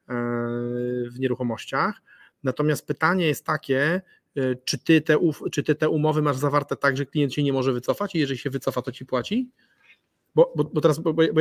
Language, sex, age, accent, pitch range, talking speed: Polish, male, 30-49, native, 120-155 Hz, 170 wpm